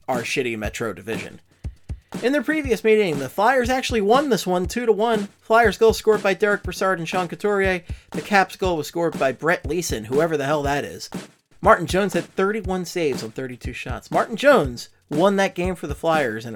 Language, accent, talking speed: English, American, 195 wpm